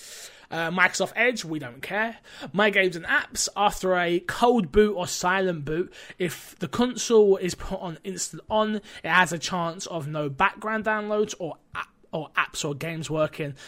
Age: 20-39